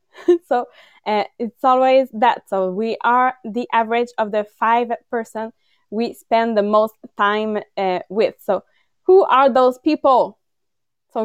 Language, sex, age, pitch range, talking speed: English, female, 20-39, 225-280 Hz, 145 wpm